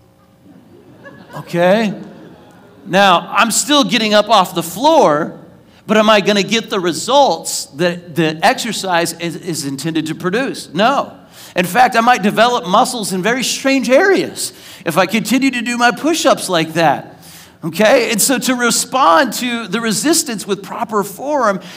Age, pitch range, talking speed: 40-59, 185-240 Hz, 155 wpm